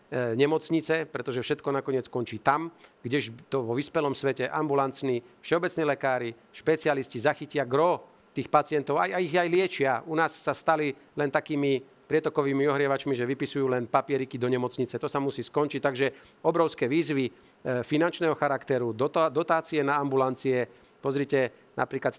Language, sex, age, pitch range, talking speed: Slovak, male, 40-59, 130-145 Hz, 140 wpm